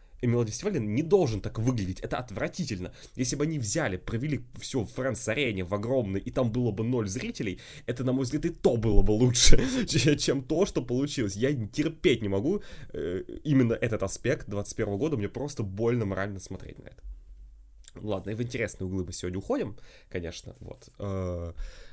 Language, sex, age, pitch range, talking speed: Russian, male, 20-39, 100-130 Hz, 180 wpm